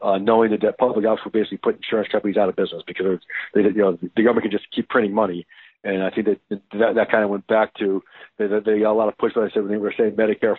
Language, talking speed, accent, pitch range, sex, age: English, 290 wpm, American, 105-125 Hz, male, 50-69